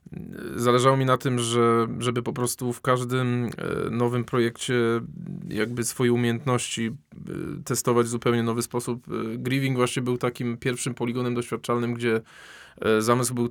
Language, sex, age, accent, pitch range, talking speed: Polish, male, 20-39, native, 120-130 Hz, 135 wpm